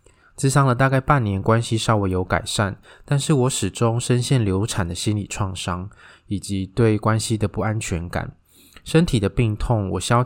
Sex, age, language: male, 20-39, Chinese